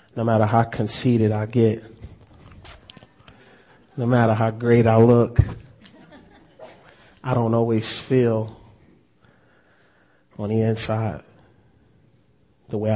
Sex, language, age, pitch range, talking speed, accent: male, English, 30-49, 110-120 Hz, 95 wpm, American